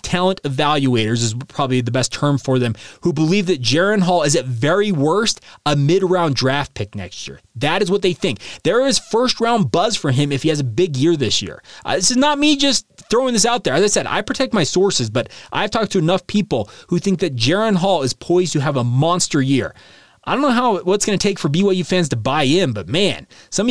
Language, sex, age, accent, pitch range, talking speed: English, male, 30-49, American, 145-190 Hz, 245 wpm